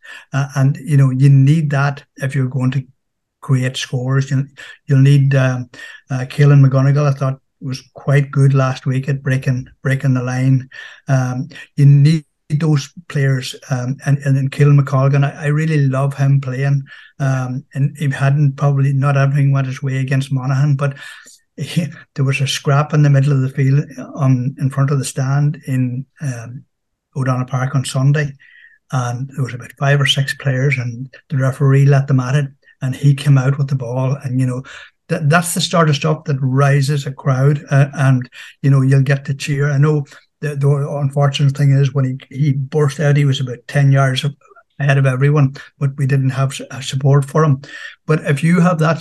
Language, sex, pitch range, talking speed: English, male, 135-145 Hz, 195 wpm